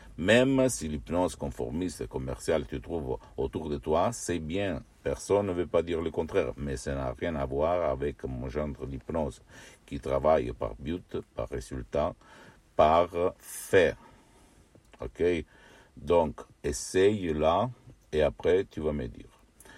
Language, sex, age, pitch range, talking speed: Italian, male, 60-79, 75-85 Hz, 145 wpm